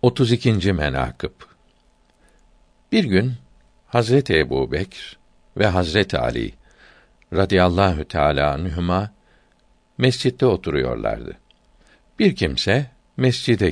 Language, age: Turkish, 60-79